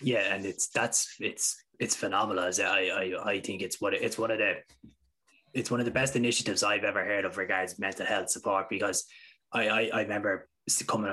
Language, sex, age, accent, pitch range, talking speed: English, male, 20-39, Irish, 95-120 Hz, 210 wpm